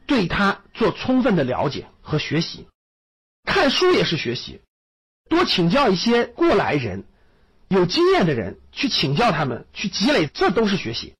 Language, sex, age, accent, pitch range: Chinese, male, 50-69, native, 170-260 Hz